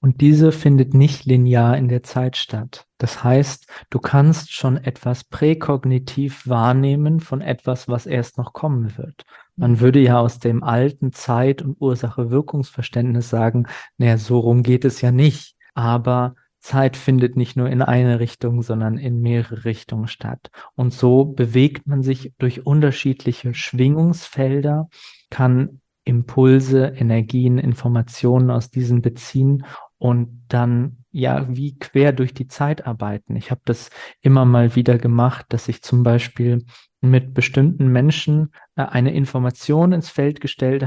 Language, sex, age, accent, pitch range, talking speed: German, male, 40-59, German, 120-135 Hz, 140 wpm